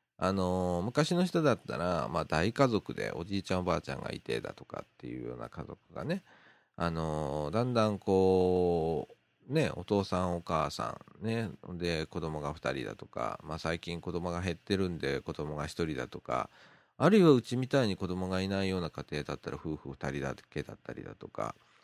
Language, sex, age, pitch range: Japanese, male, 40-59, 80-105 Hz